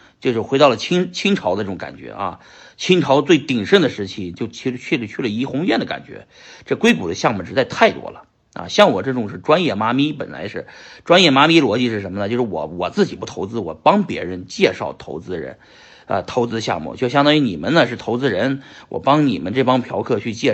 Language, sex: Chinese, male